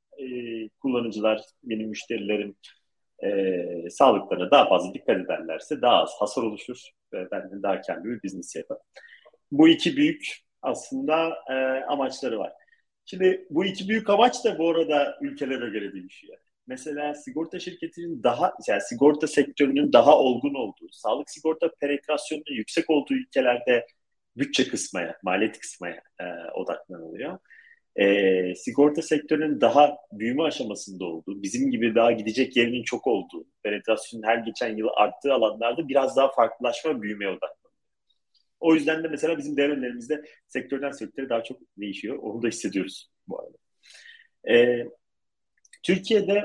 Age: 40-59